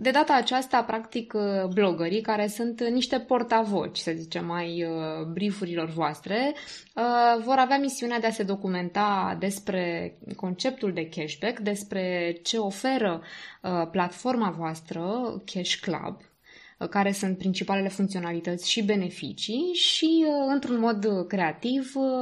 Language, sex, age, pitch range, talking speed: Romanian, female, 20-39, 185-245 Hz, 115 wpm